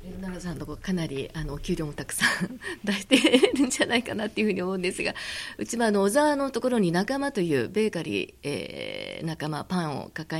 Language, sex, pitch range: Japanese, female, 160-210 Hz